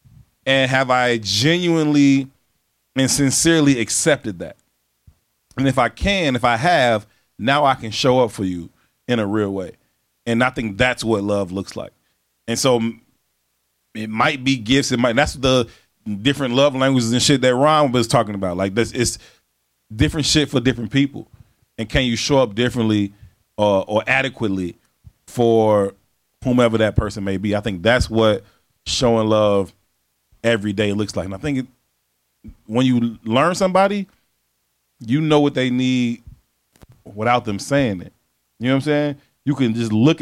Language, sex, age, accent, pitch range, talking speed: English, male, 30-49, American, 100-135 Hz, 170 wpm